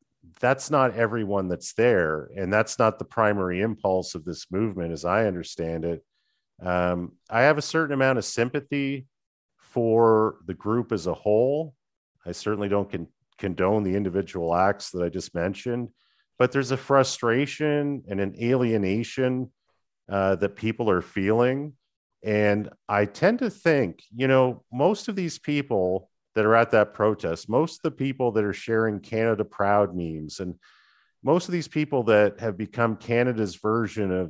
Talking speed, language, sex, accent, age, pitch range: 165 wpm, English, male, American, 40-59, 95-120 Hz